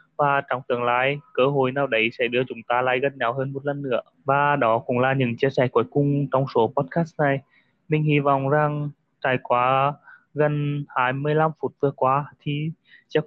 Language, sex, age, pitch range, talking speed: Vietnamese, male, 20-39, 130-150 Hz, 205 wpm